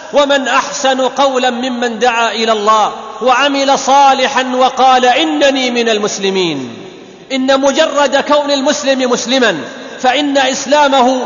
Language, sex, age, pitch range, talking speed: Arabic, male, 40-59, 245-275 Hz, 105 wpm